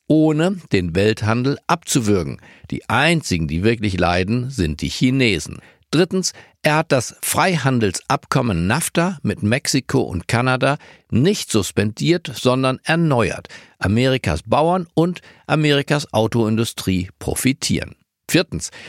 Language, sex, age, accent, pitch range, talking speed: German, male, 50-69, German, 105-150 Hz, 105 wpm